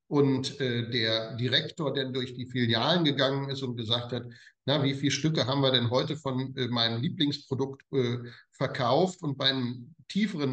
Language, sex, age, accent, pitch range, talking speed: German, male, 50-69, German, 125-150 Hz, 170 wpm